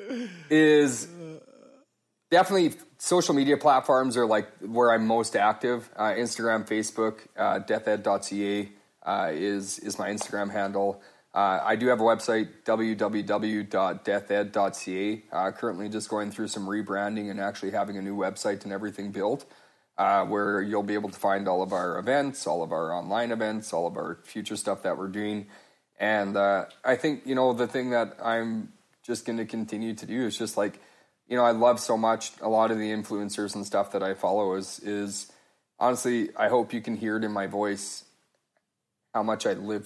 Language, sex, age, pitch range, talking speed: English, male, 30-49, 100-120 Hz, 180 wpm